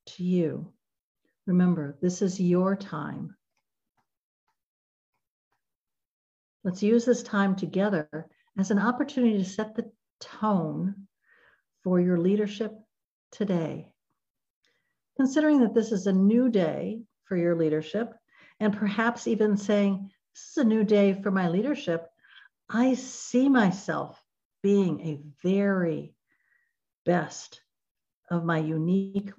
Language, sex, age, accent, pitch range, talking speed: English, female, 60-79, American, 175-215 Hz, 110 wpm